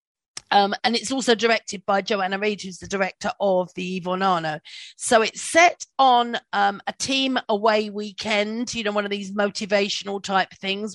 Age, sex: 40-59, female